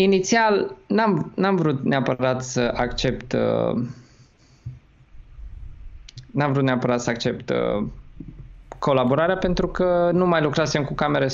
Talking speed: 115 wpm